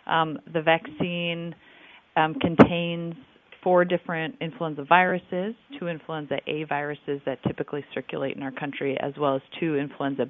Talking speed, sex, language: 140 wpm, female, English